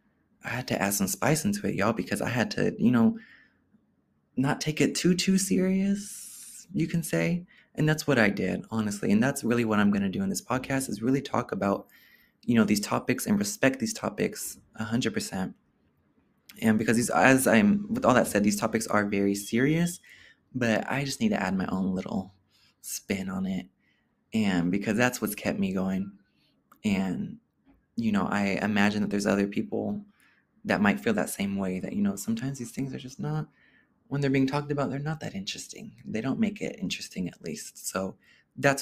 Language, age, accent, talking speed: English, 20-39, American, 200 wpm